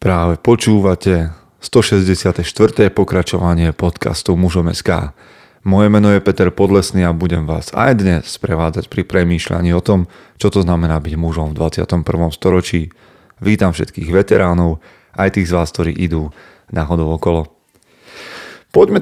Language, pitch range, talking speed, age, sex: Slovak, 90-105 Hz, 135 wpm, 30-49, male